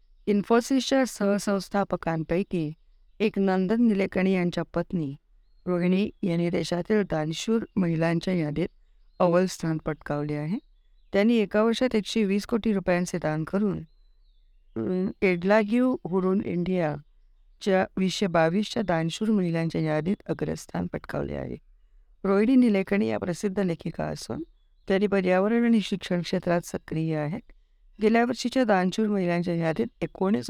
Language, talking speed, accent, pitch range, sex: Marathi, 110 wpm, native, 155-205 Hz, female